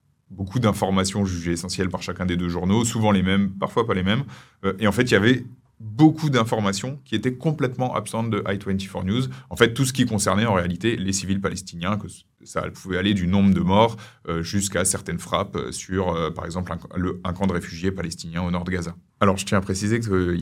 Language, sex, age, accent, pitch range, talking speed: French, male, 30-49, French, 95-110 Hz, 225 wpm